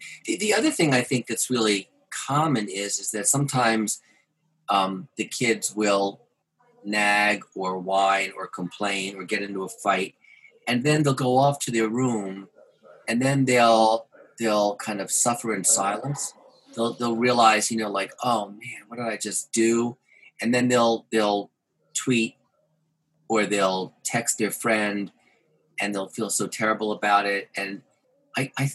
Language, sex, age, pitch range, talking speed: English, male, 40-59, 100-125 Hz, 160 wpm